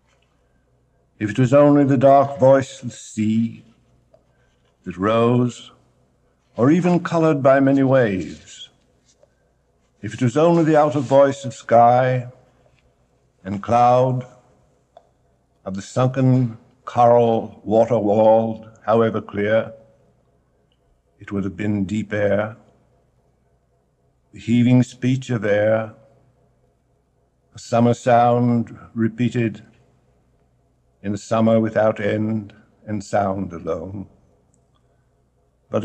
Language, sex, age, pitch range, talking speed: English, male, 60-79, 105-130 Hz, 100 wpm